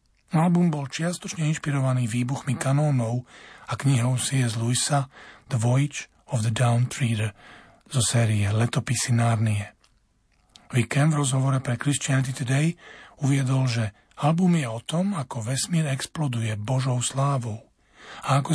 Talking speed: 120 wpm